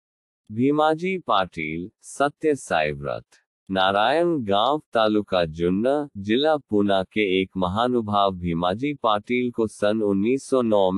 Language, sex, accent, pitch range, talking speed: Hindi, male, native, 100-130 Hz, 100 wpm